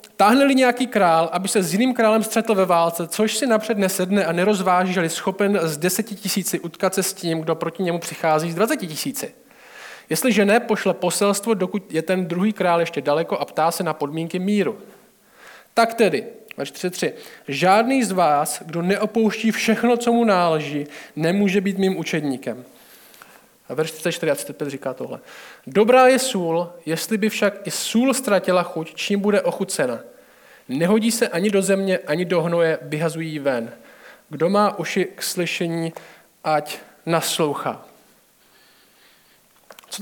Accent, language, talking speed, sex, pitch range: native, Czech, 155 wpm, male, 165-210 Hz